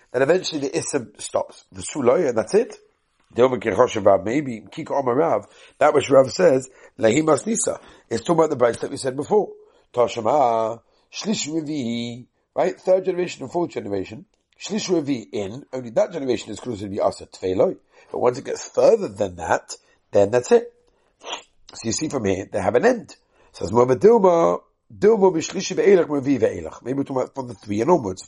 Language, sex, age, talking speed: English, male, 50-69, 190 wpm